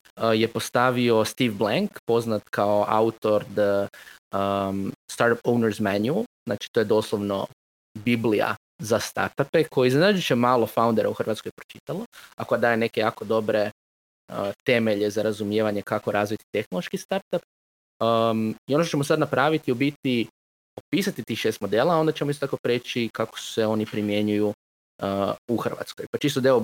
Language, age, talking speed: Croatian, 20-39, 155 wpm